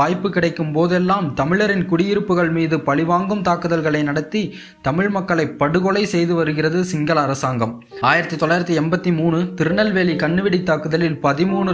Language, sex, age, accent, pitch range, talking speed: Tamil, male, 20-39, native, 155-185 Hz, 105 wpm